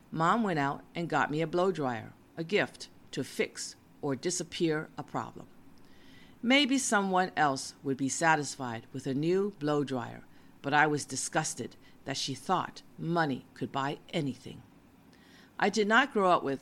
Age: 50-69